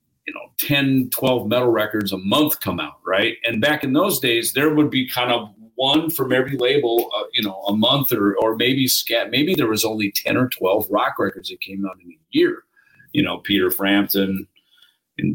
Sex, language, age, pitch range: male, English, 40-59, 110-160 Hz